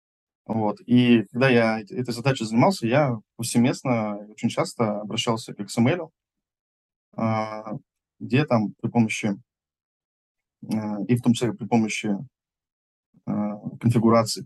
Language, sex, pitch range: Russian, male, 105-120 Hz